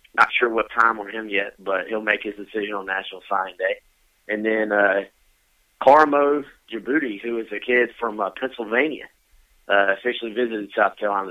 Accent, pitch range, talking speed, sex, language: American, 100-120 Hz, 175 wpm, male, English